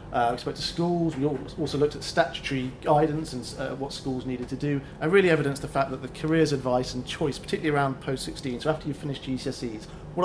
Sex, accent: male, British